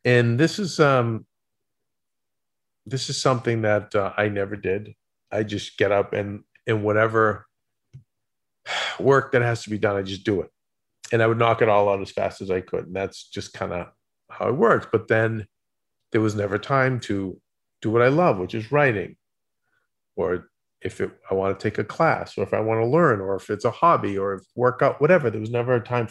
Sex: male